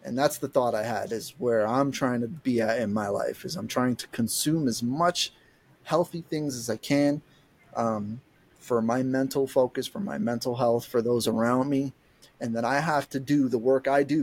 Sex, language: male, English